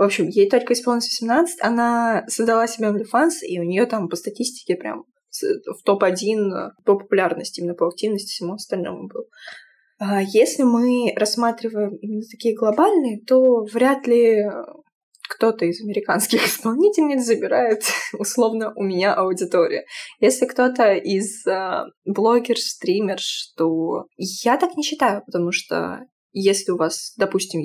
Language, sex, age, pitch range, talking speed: Russian, female, 20-39, 180-240 Hz, 130 wpm